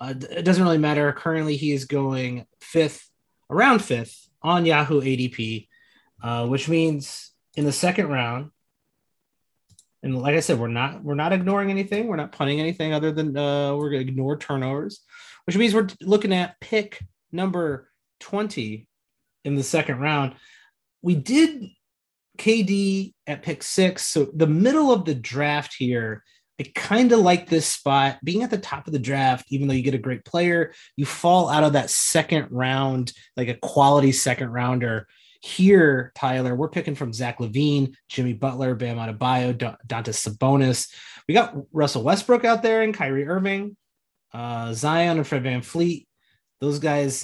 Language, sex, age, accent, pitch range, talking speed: English, male, 30-49, American, 130-175 Hz, 165 wpm